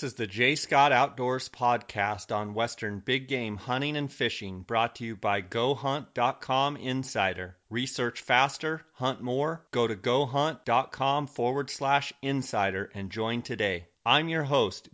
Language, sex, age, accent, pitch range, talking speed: English, male, 30-49, American, 115-135 Hz, 145 wpm